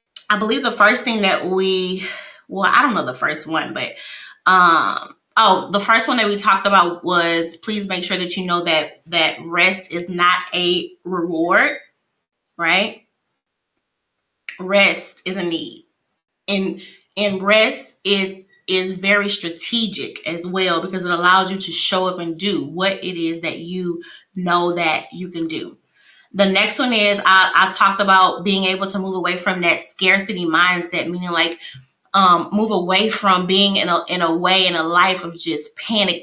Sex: female